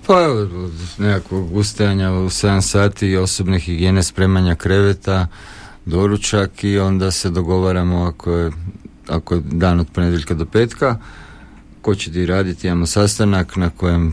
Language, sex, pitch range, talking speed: Croatian, male, 85-100 Hz, 140 wpm